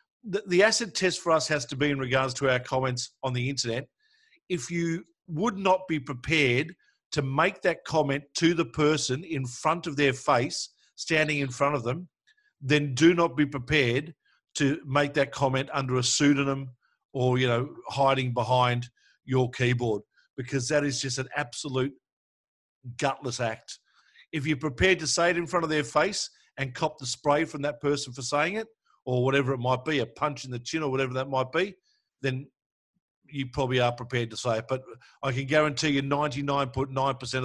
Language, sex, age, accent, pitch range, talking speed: English, male, 50-69, Australian, 125-155 Hz, 185 wpm